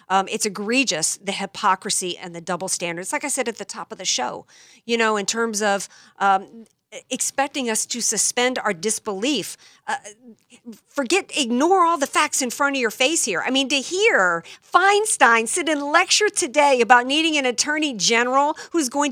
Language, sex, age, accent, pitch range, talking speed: English, female, 50-69, American, 205-280 Hz, 180 wpm